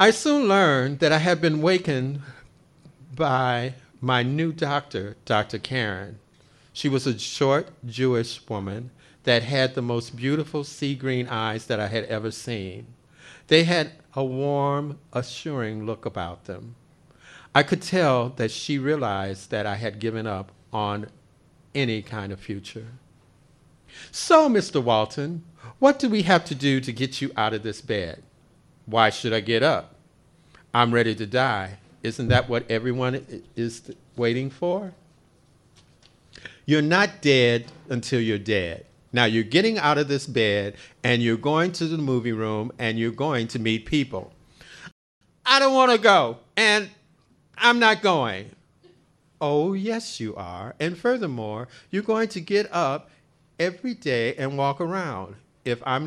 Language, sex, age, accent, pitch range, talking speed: English, male, 50-69, American, 115-155 Hz, 150 wpm